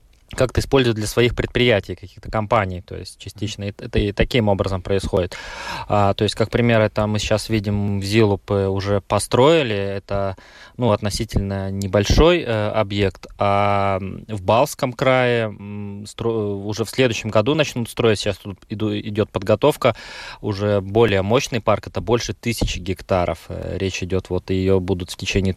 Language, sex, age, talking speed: Russian, male, 20-39, 145 wpm